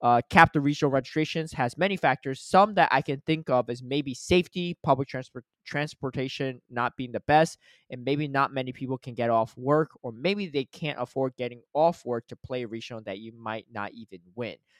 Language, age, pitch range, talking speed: English, 20-39, 115-145 Hz, 205 wpm